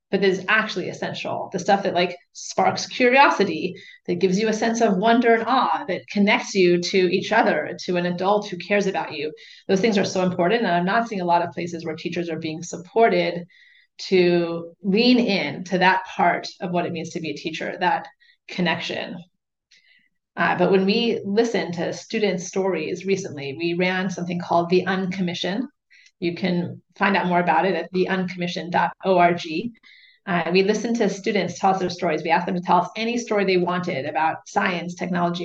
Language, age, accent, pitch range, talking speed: English, 30-49, American, 175-205 Hz, 190 wpm